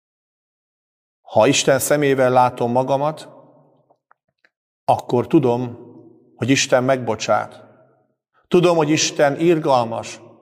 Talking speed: 80 wpm